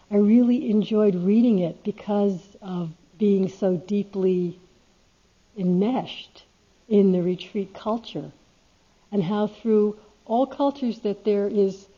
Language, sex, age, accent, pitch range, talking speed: English, female, 60-79, American, 185-220 Hz, 115 wpm